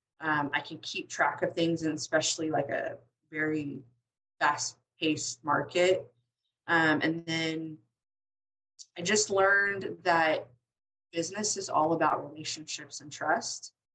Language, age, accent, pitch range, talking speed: English, 20-39, American, 140-170 Hz, 125 wpm